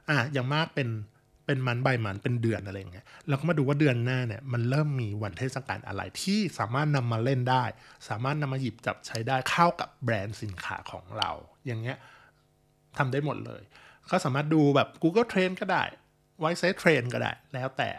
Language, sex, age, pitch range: Thai, male, 20-39, 120-150 Hz